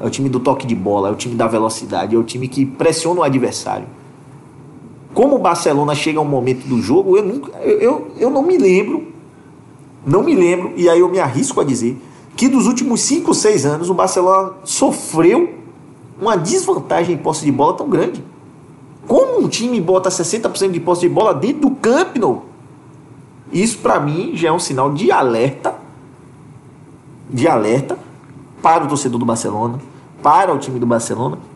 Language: Portuguese